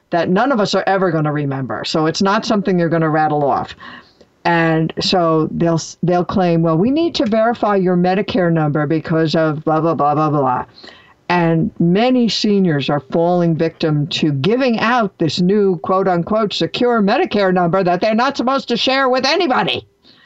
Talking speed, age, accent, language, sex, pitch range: 185 wpm, 60-79, American, English, female, 165-220 Hz